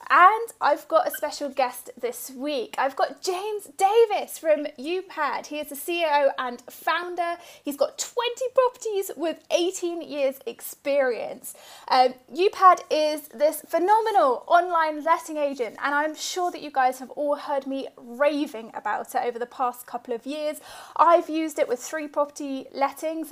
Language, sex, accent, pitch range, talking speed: English, female, British, 280-360 Hz, 160 wpm